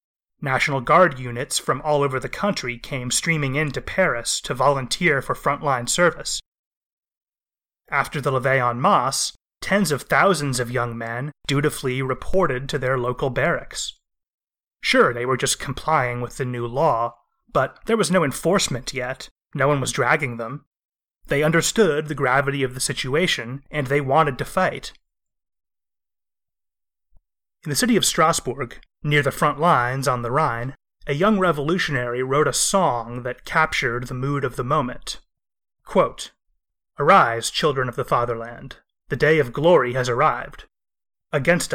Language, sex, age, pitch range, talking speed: English, male, 30-49, 125-155 Hz, 150 wpm